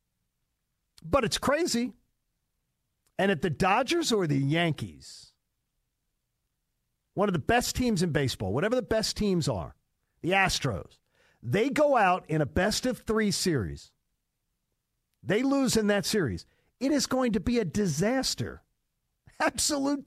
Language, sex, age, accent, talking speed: English, male, 50-69, American, 130 wpm